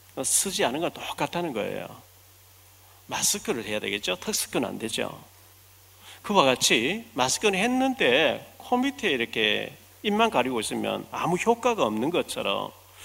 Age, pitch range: 40-59, 110-180 Hz